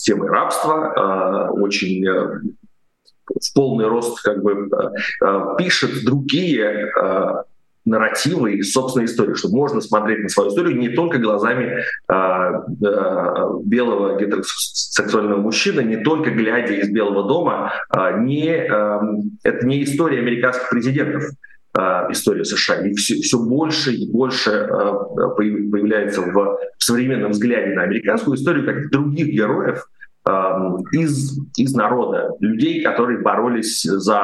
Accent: native